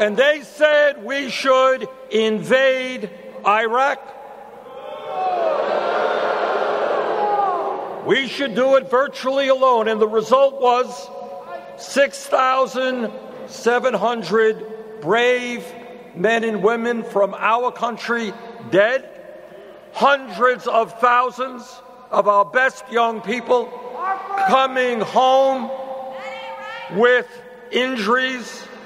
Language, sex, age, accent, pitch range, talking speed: English, male, 60-79, American, 235-270 Hz, 80 wpm